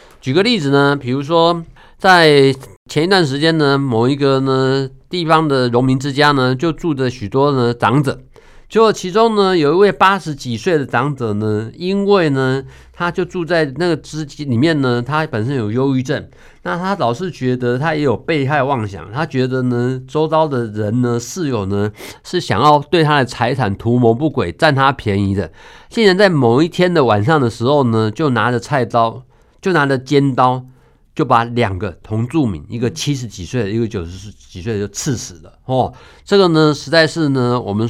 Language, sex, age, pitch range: Chinese, male, 50-69, 120-165 Hz